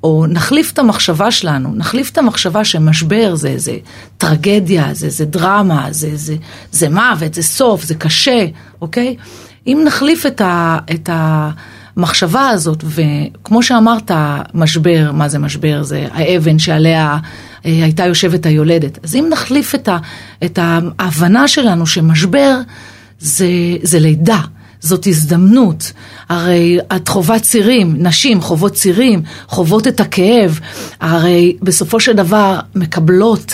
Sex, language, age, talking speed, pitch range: female, Hebrew, 40-59, 130 wpm, 165-225 Hz